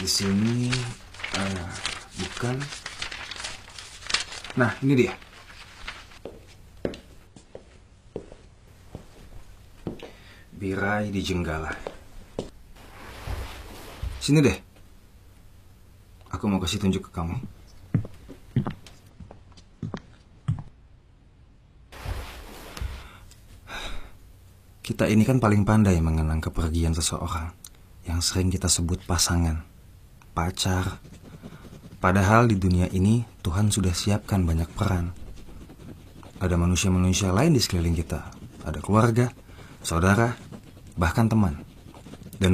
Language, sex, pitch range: Indonesian, male, 90-105 Hz